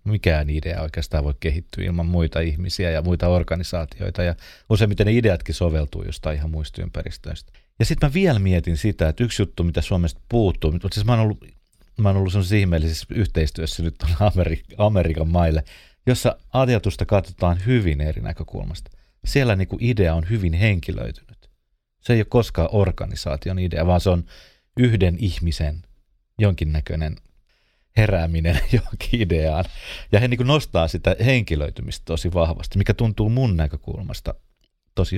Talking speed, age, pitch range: 145 wpm, 30-49, 80-105 Hz